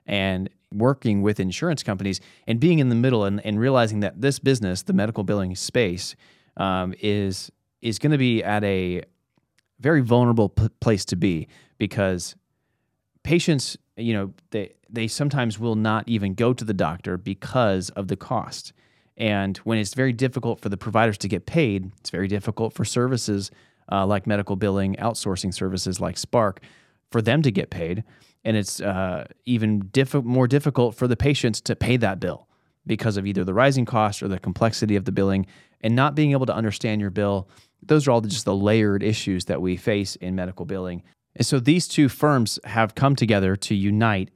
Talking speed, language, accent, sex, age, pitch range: 185 wpm, English, American, male, 30-49, 95-120 Hz